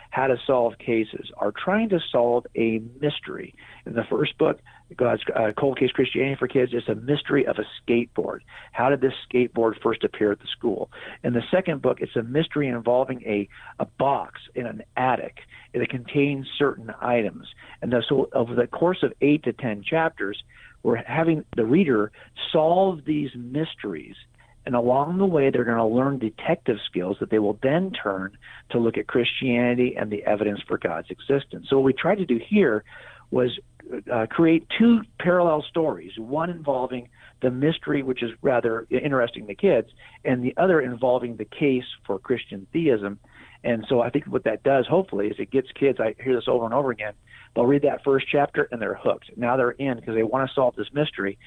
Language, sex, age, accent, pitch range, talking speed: English, male, 50-69, American, 115-145 Hz, 190 wpm